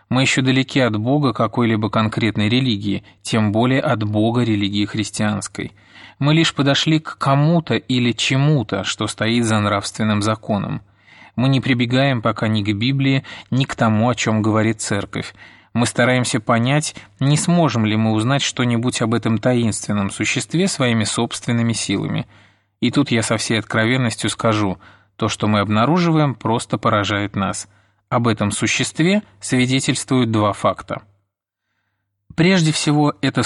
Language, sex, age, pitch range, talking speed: Russian, male, 20-39, 105-130 Hz, 140 wpm